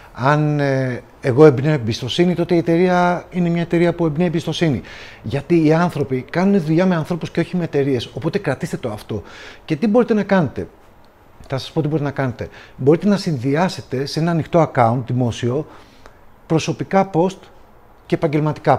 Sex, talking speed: male, 165 wpm